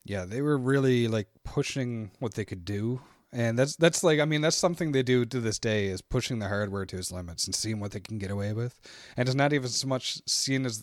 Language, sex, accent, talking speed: English, male, American, 250 wpm